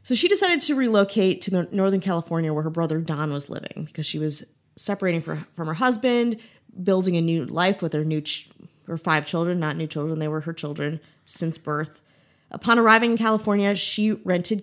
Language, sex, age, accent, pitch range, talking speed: English, female, 30-49, American, 155-200 Hz, 195 wpm